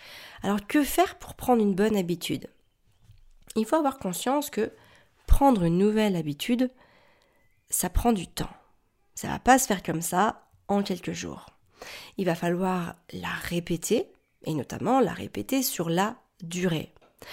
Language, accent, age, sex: French, French, 40-59, female